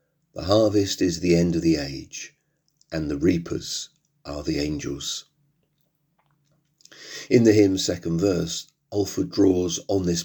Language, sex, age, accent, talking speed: English, male, 40-59, British, 135 wpm